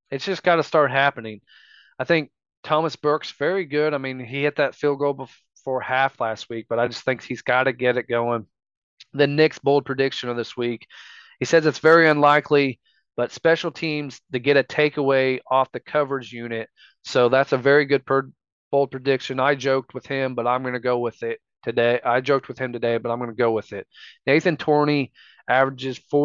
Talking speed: 205 wpm